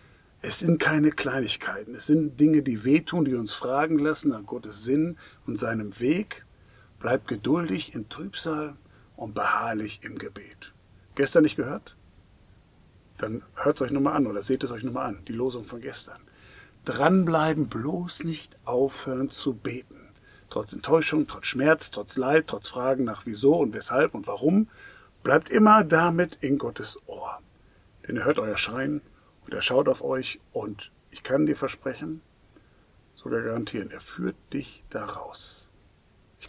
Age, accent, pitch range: 50-69, German, 115-155 Hz